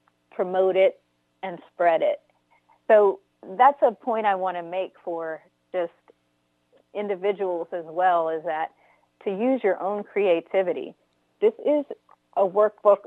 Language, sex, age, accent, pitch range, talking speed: English, female, 40-59, American, 170-210 Hz, 135 wpm